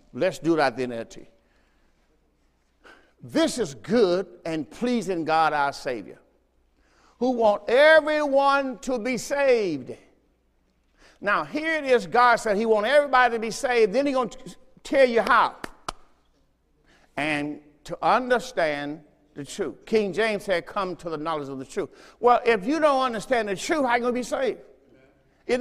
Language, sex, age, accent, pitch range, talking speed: English, male, 50-69, American, 185-255 Hz, 160 wpm